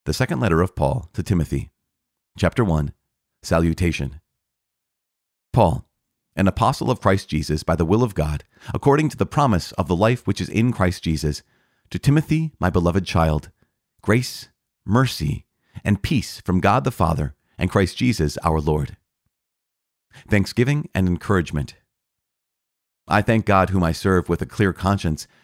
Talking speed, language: 150 wpm, English